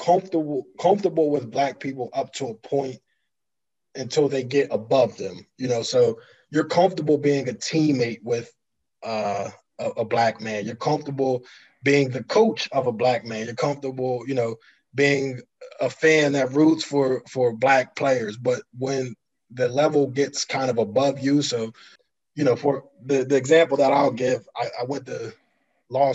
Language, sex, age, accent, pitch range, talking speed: English, male, 20-39, American, 120-140 Hz, 170 wpm